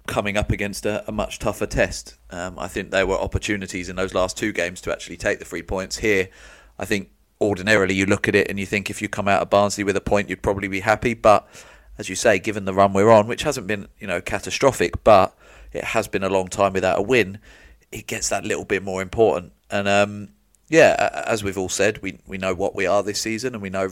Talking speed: 250 wpm